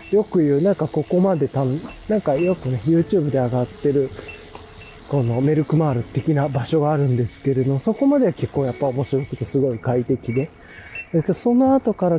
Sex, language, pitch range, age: male, Japanese, 125-180 Hz, 20-39